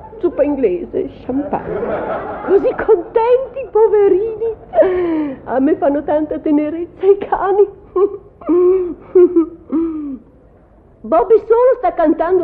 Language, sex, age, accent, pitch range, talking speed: Italian, female, 50-69, native, 275-375 Hz, 80 wpm